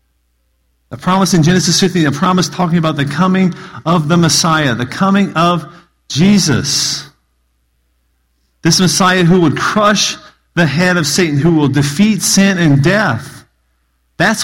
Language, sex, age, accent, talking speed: English, male, 40-59, American, 140 wpm